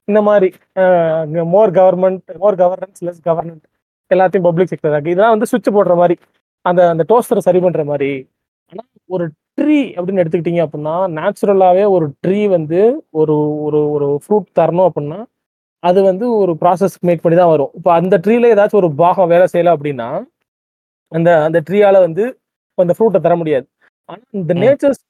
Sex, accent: male, native